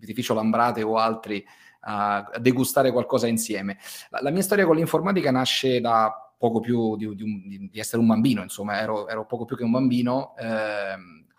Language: Italian